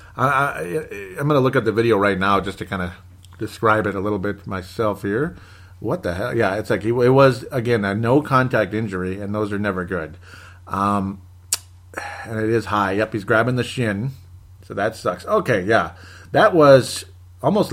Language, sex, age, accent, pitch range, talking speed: English, male, 40-59, American, 95-120 Hz, 185 wpm